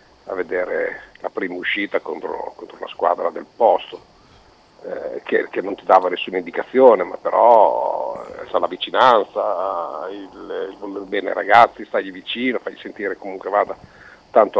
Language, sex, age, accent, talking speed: Italian, male, 50-69, native, 145 wpm